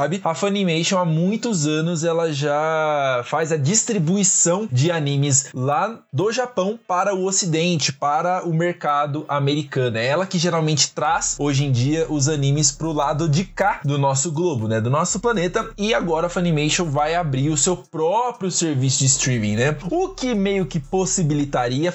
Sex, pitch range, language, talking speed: male, 145-195 Hz, Portuguese, 170 wpm